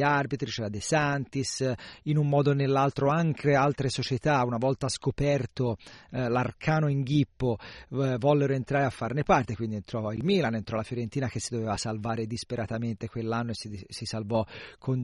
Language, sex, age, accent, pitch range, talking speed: Italian, male, 40-59, native, 120-145 Hz, 170 wpm